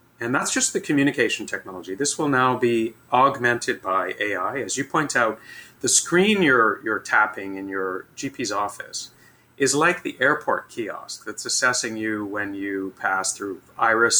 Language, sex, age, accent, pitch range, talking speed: English, male, 40-59, American, 110-140 Hz, 165 wpm